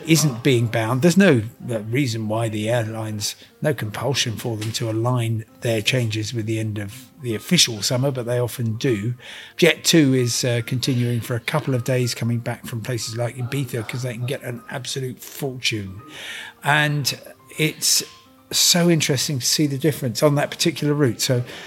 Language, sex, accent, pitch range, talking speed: English, male, British, 115-145 Hz, 175 wpm